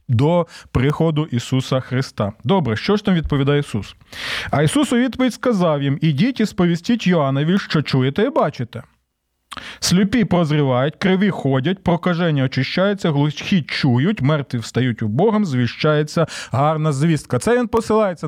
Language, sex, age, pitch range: Ukrainian, male, 20-39, 145-220 Hz